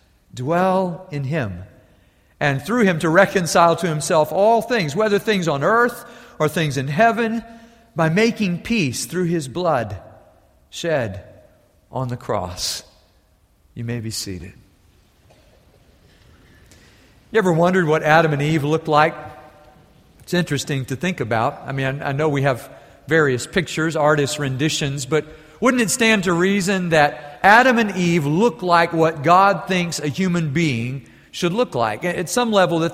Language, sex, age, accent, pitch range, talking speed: English, male, 50-69, American, 140-195 Hz, 150 wpm